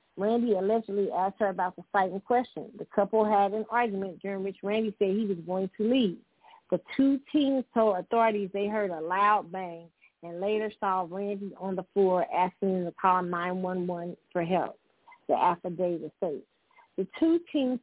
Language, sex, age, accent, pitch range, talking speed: English, female, 40-59, American, 180-215 Hz, 180 wpm